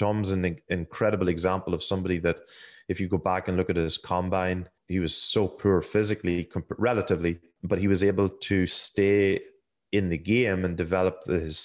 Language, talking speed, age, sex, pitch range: English, 175 wpm, 30-49, male, 95-110 Hz